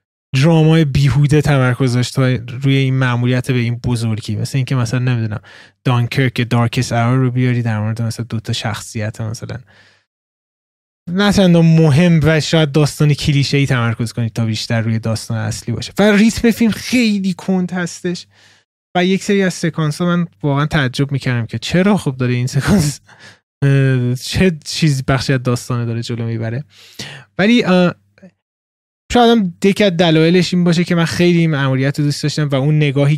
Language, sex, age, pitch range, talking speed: Persian, male, 20-39, 120-155 Hz, 160 wpm